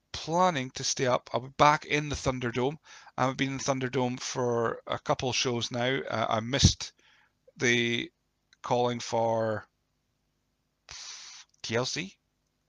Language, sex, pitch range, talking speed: English, male, 110-135 Hz, 130 wpm